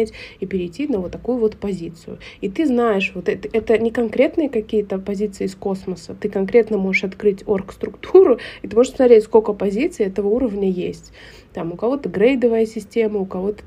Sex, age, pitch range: female, 20-39, 190-225 Hz